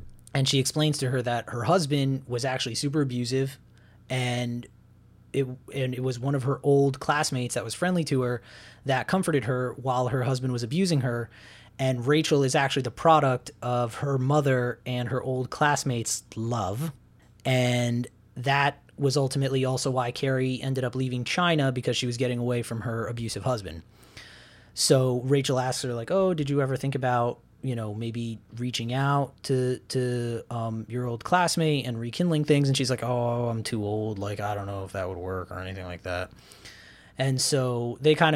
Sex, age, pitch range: male, 20-39, 120-140 Hz